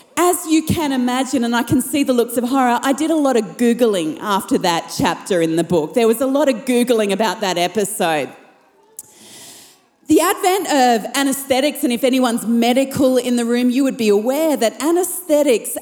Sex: female